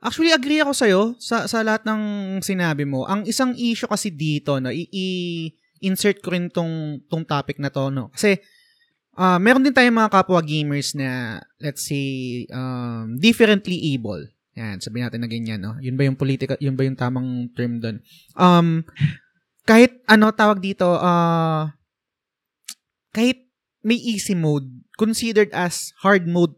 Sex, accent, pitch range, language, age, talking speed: male, native, 140-200 Hz, Filipino, 20-39, 160 wpm